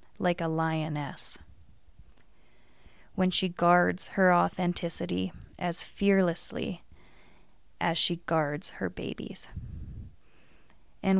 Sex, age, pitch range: female, 20-39, 165-190 Hz